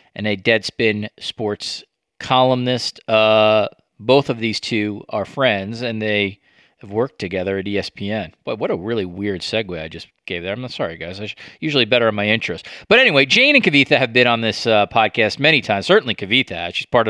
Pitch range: 105-135 Hz